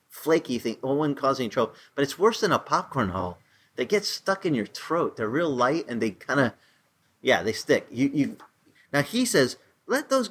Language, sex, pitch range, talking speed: English, male, 120-190 Hz, 200 wpm